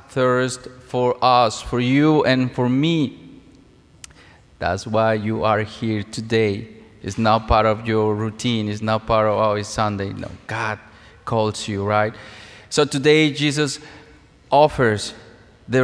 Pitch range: 110-125 Hz